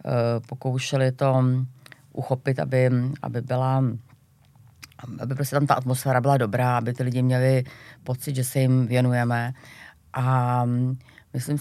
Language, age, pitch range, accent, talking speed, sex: Czech, 30-49, 130-150 Hz, native, 125 wpm, female